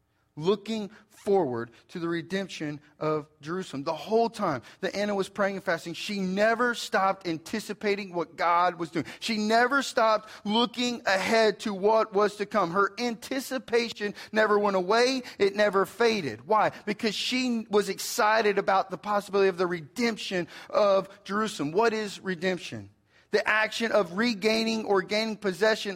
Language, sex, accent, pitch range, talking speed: English, male, American, 175-215 Hz, 150 wpm